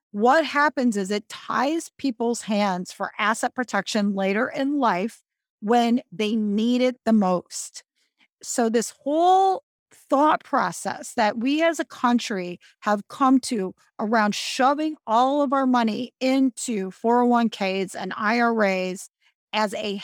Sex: female